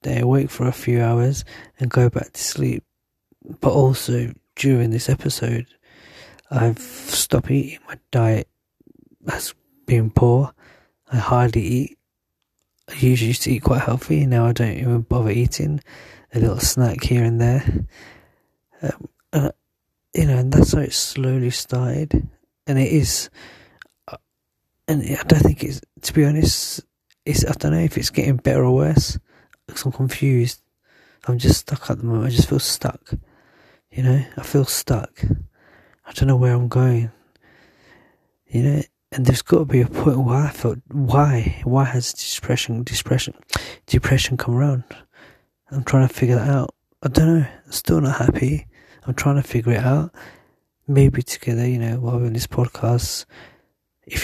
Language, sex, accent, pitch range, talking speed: English, male, British, 120-140 Hz, 165 wpm